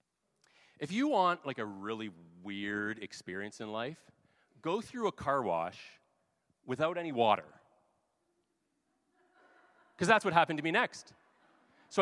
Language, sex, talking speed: English, male, 130 wpm